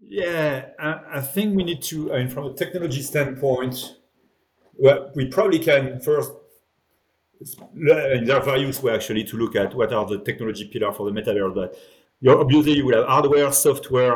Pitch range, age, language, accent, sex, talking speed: 110-145 Hz, 40-59, English, French, male, 180 wpm